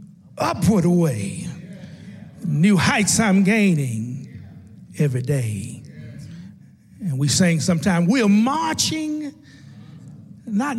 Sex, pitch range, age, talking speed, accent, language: male, 150-205 Hz, 60-79, 85 wpm, American, English